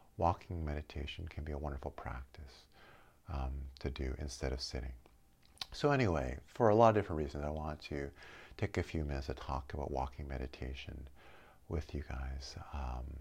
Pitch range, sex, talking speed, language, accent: 75-100 Hz, male, 170 wpm, English, American